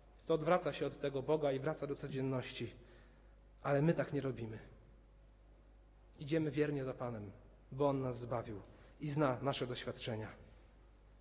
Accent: native